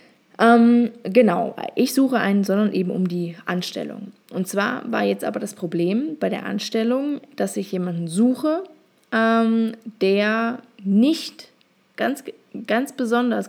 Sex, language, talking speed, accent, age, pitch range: female, German, 135 wpm, German, 20-39, 190-235 Hz